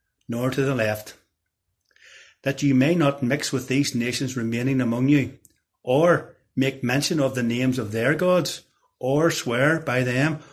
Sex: male